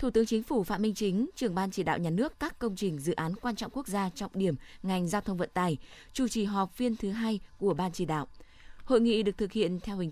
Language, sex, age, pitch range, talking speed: Vietnamese, female, 20-39, 180-230 Hz, 275 wpm